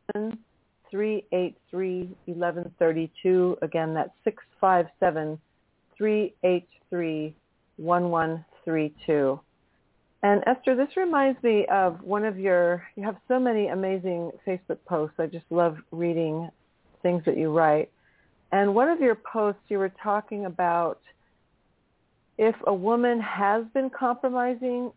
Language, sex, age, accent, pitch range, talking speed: English, female, 40-59, American, 170-215 Hz, 105 wpm